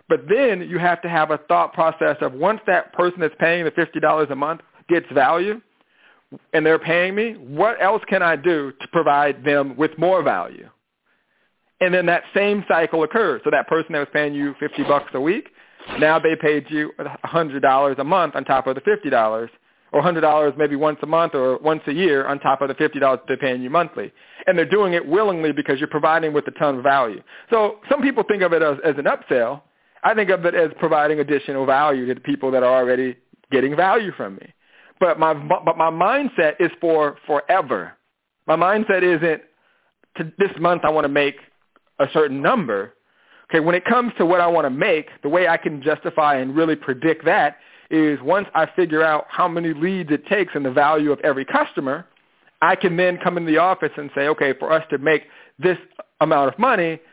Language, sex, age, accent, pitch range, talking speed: English, male, 40-59, American, 145-180 Hz, 205 wpm